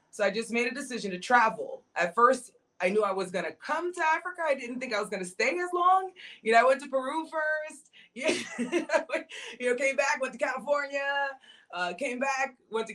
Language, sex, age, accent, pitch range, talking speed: English, female, 30-49, American, 185-245 Hz, 215 wpm